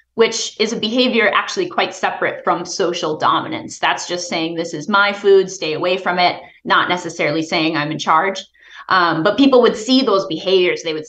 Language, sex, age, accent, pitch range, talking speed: English, female, 20-39, American, 165-210 Hz, 195 wpm